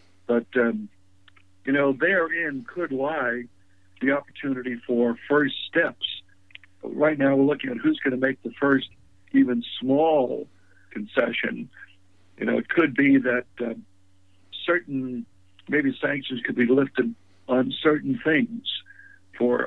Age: 60-79